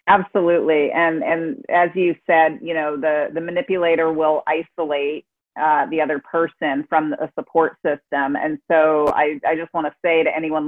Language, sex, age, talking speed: English, female, 40-59, 180 wpm